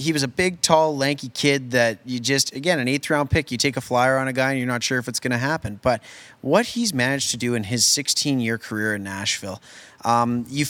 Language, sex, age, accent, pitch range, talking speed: English, male, 20-39, American, 110-135 Hz, 255 wpm